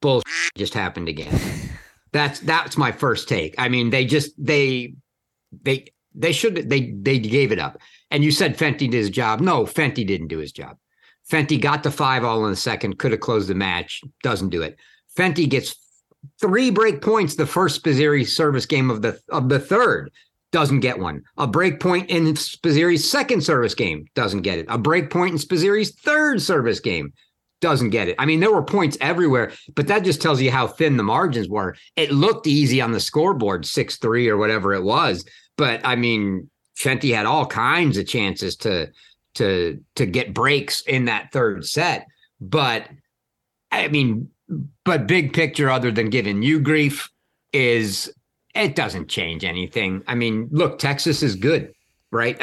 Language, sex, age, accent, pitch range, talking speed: English, male, 50-69, American, 115-155 Hz, 185 wpm